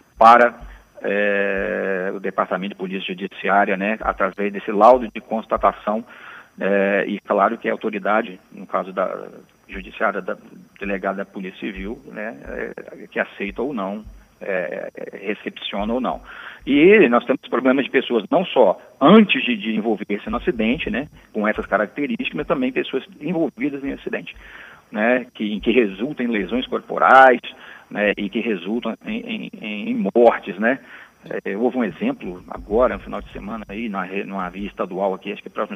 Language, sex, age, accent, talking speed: Portuguese, male, 40-59, Brazilian, 150 wpm